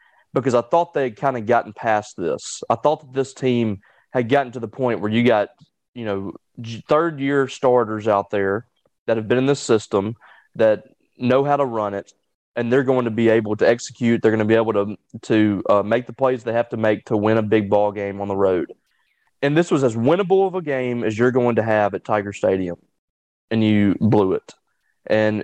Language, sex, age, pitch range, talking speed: English, male, 20-39, 110-135 Hz, 220 wpm